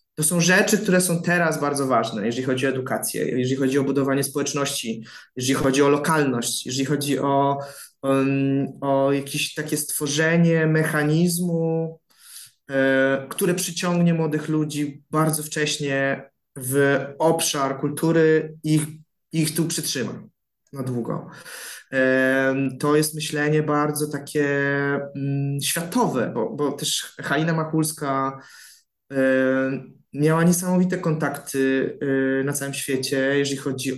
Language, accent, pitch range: Polish, native, 135-155 Hz